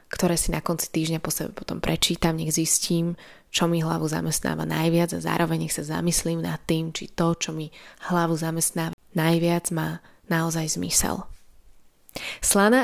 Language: Slovak